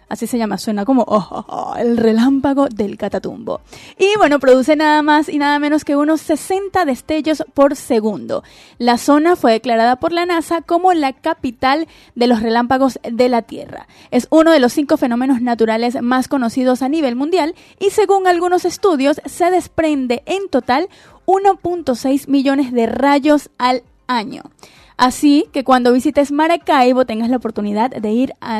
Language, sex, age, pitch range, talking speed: Spanish, female, 20-39, 240-315 Hz, 160 wpm